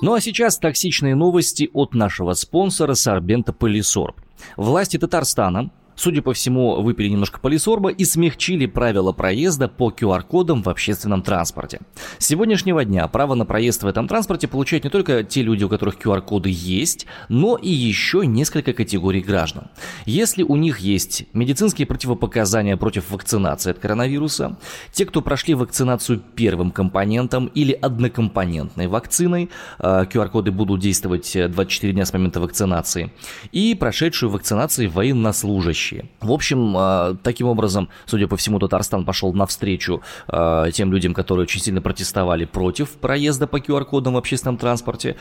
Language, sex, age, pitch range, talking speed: Russian, male, 20-39, 100-145 Hz, 140 wpm